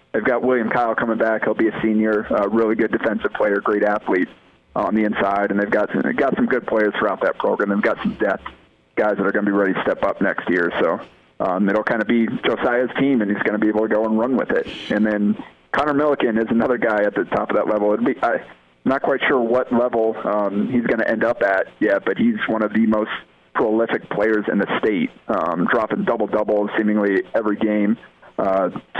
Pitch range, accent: 100-110 Hz, American